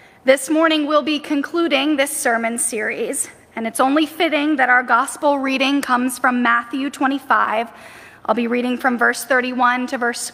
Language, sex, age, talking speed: English, female, 10-29, 165 wpm